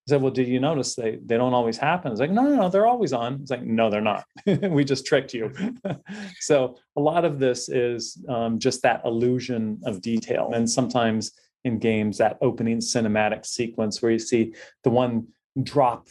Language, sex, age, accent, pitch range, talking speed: English, male, 30-49, American, 110-135 Hz, 195 wpm